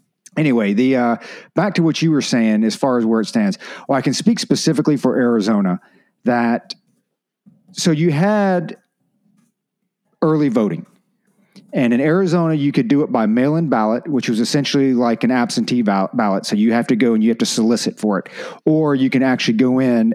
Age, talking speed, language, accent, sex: 40-59, 190 wpm, English, American, male